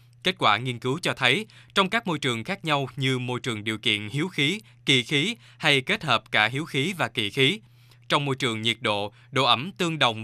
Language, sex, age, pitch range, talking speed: Vietnamese, male, 20-39, 120-150 Hz, 230 wpm